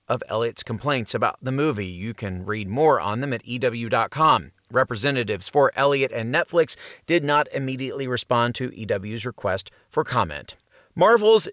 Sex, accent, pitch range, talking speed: male, American, 130-175 Hz, 150 wpm